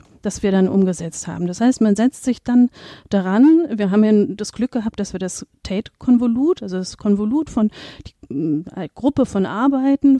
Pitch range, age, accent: 200-245 Hz, 40-59, German